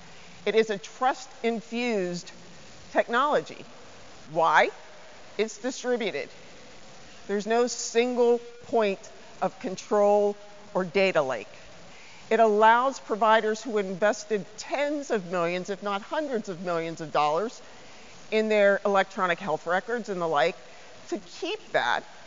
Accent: American